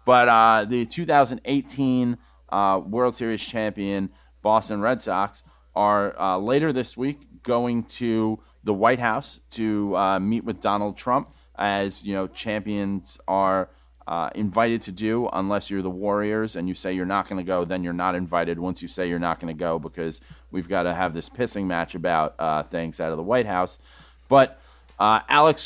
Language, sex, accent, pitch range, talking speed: English, male, American, 90-115 Hz, 185 wpm